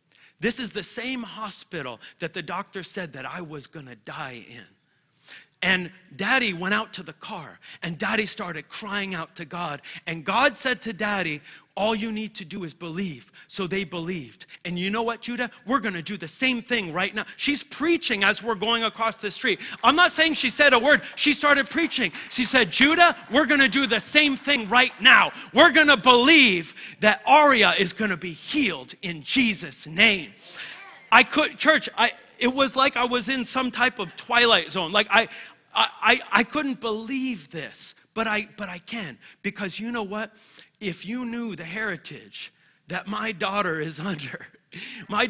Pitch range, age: 185-245 Hz, 40-59